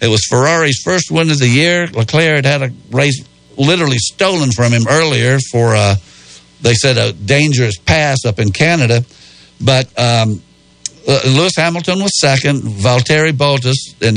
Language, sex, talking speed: English, male, 155 wpm